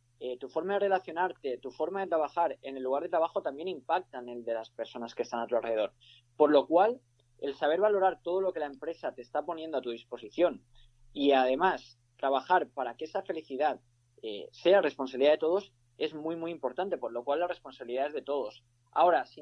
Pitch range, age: 125-170 Hz, 20-39